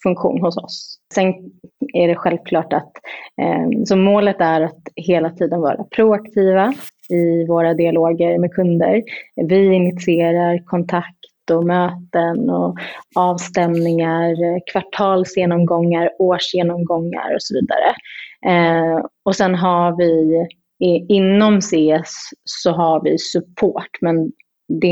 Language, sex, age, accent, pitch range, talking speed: Swedish, female, 30-49, native, 165-195 Hz, 105 wpm